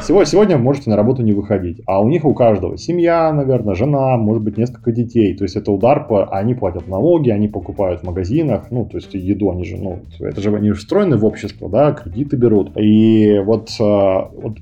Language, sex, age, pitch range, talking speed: English, male, 20-39, 100-125 Hz, 205 wpm